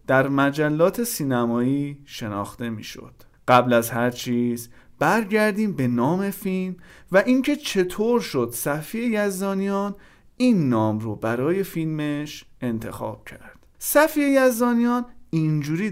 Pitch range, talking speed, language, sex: 125-195 Hz, 110 wpm, Persian, male